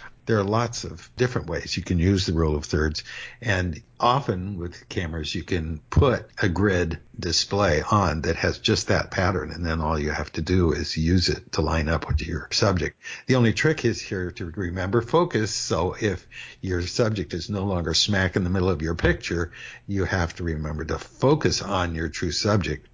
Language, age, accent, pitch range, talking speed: English, 60-79, American, 85-105 Hz, 200 wpm